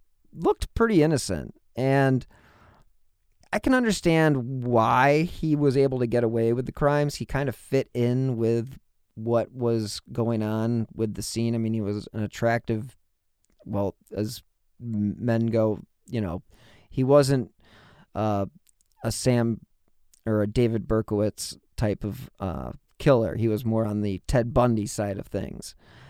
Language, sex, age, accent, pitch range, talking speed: English, male, 40-59, American, 105-130 Hz, 150 wpm